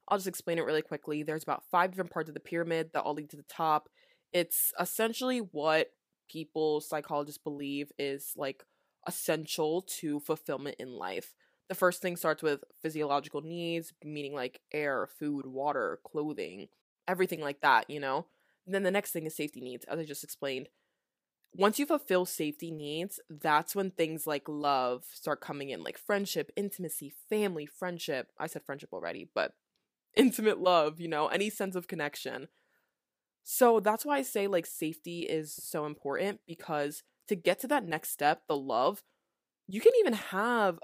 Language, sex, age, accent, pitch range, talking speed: English, female, 20-39, American, 150-185 Hz, 170 wpm